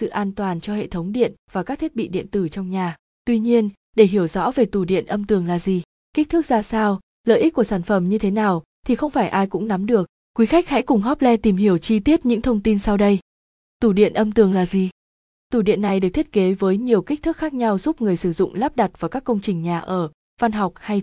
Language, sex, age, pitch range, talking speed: Vietnamese, female, 20-39, 190-235 Hz, 265 wpm